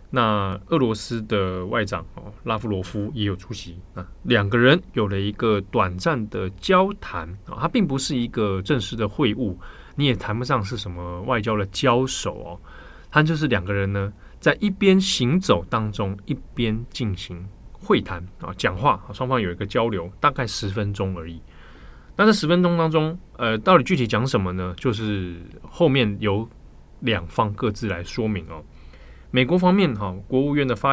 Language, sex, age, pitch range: Chinese, male, 20-39, 95-130 Hz